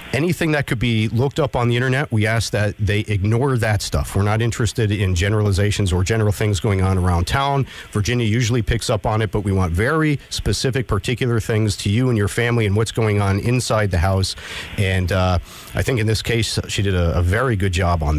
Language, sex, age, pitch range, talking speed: English, male, 50-69, 95-115 Hz, 225 wpm